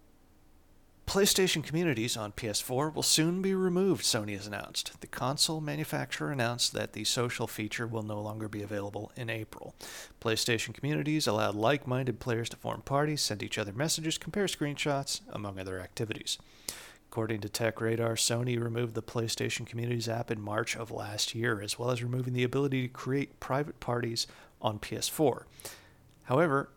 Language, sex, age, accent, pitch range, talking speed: English, male, 40-59, American, 110-145 Hz, 155 wpm